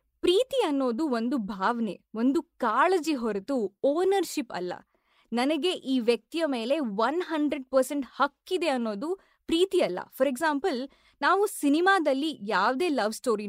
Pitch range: 230-320 Hz